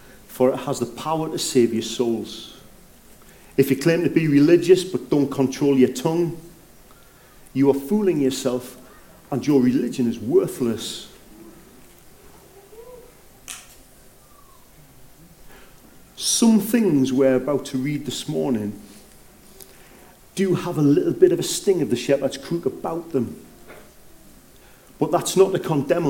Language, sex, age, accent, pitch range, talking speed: English, male, 40-59, British, 130-195 Hz, 130 wpm